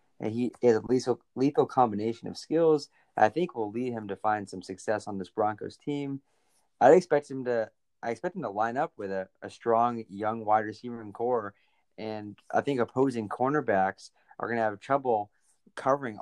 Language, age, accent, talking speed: English, 20-39, American, 190 wpm